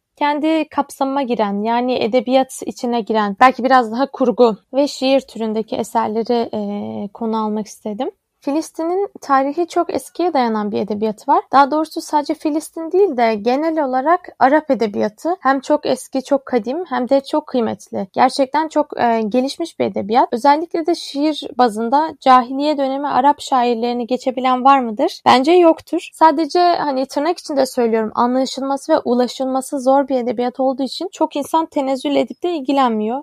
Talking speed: 150 wpm